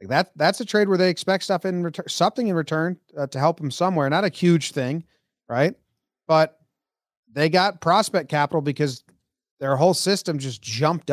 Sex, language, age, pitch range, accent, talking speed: male, English, 30-49, 130-170 Hz, American, 185 wpm